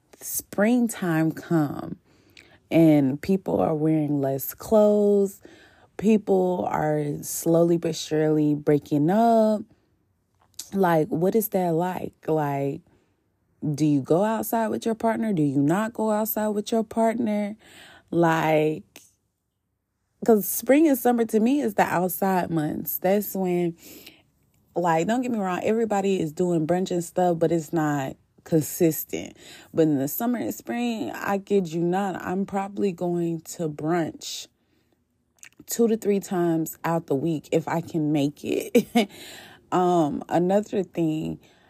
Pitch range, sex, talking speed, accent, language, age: 155-210 Hz, female, 135 wpm, American, English, 20-39